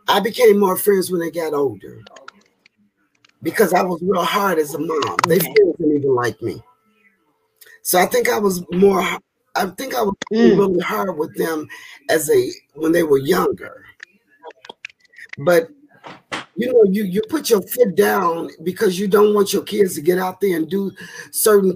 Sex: male